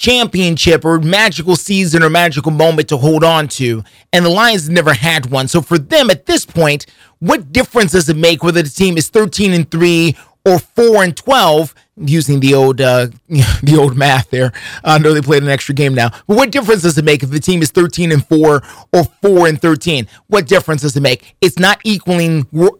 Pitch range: 155-230 Hz